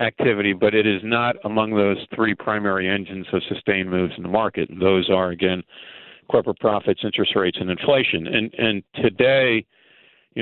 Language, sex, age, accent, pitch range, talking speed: English, male, 50-69, American, 95-110 Hz, 175 wpm